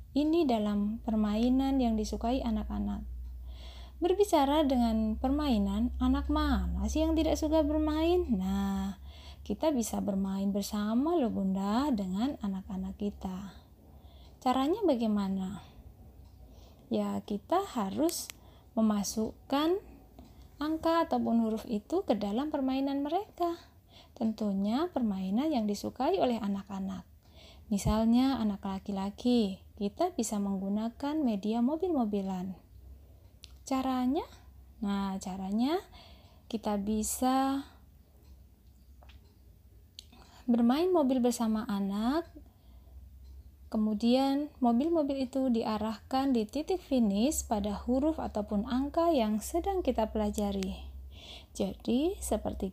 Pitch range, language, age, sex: 195-270 Hz, Indonesian, 20-39, female